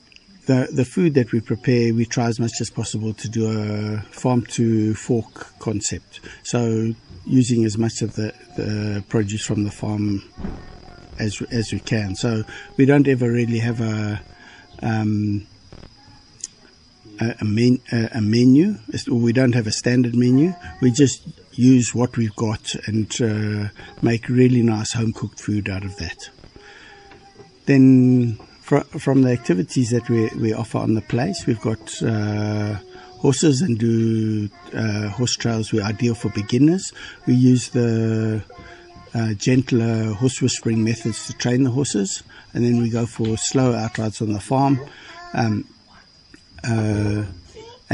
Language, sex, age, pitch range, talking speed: English, male, 60-79, 110-125 Hz, 145 wpm